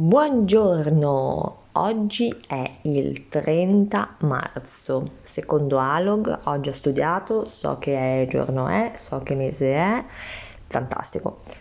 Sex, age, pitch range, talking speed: female, 30-49, 135-185 Hz, 110 wpm